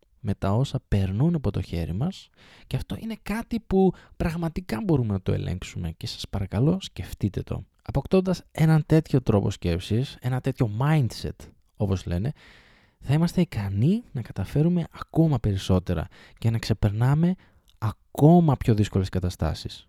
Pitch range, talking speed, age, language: 100-155 Hz, 140 wpm, 20-39, Greek